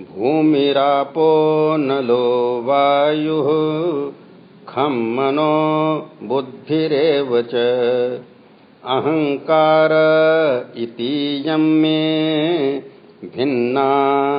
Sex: male